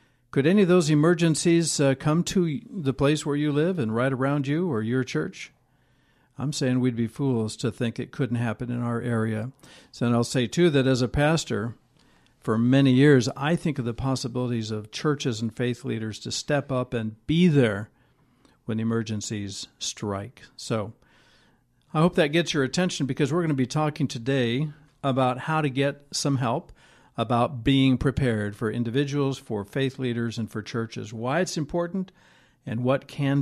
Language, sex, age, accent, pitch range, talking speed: English, male, 60-79, American, 120-145 Hz, 180 wpm